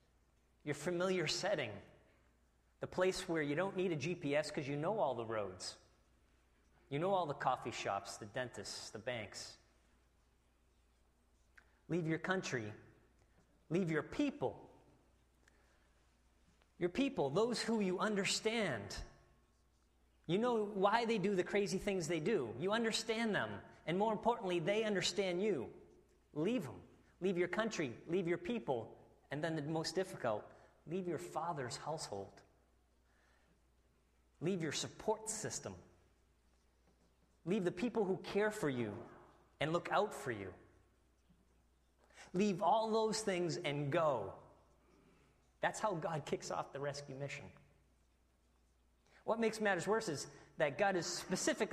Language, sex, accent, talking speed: English, male, American, 130 wpm